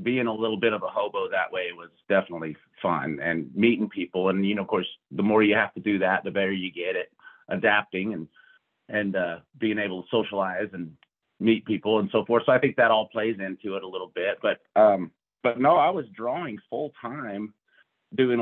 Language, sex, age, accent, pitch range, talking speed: English, male, 30-49, American, 95-115 Hz, 220 wpm